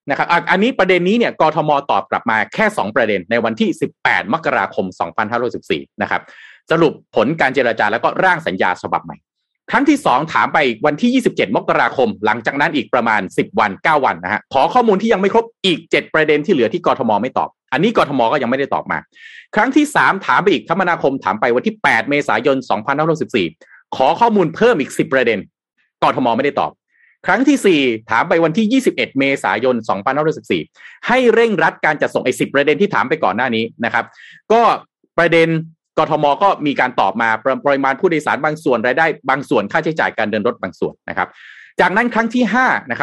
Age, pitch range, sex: 30-49, 145-225 Hz, male